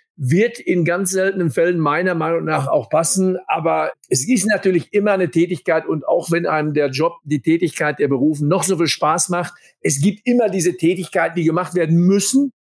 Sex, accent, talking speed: male, German, 195 wpm